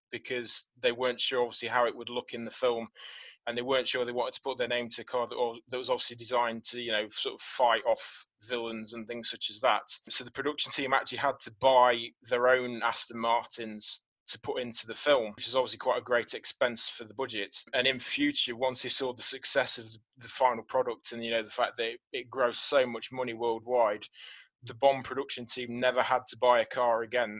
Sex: male